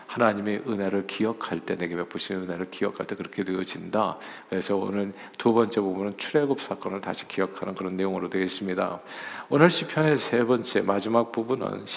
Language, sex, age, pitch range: Korean, male, 50-69, 100-130 Hz